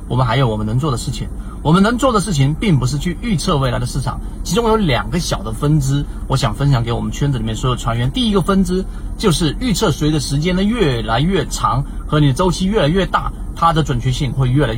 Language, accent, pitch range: Chinese, native, 120-170 Hz